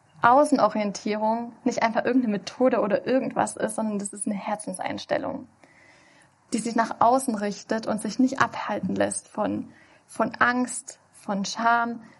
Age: 10-29